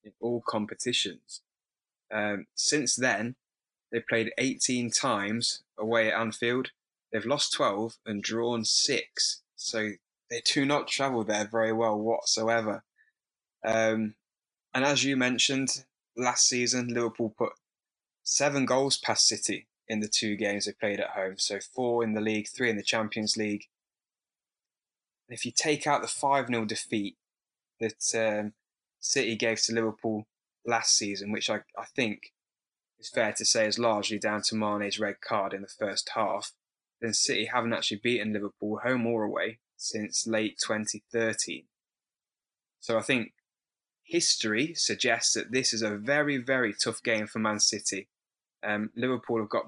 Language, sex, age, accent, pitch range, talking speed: English, male, 10-29, British, 105-125 Hz, 150 wpm